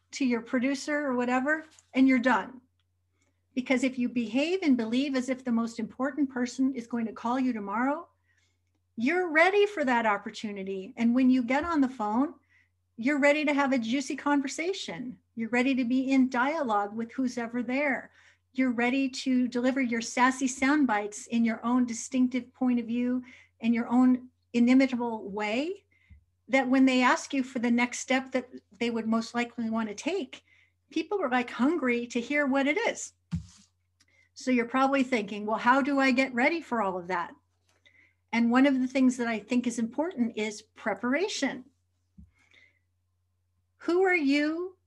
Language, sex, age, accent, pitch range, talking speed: English, female, 50-69, American, 220-270 Hz, 175 wpm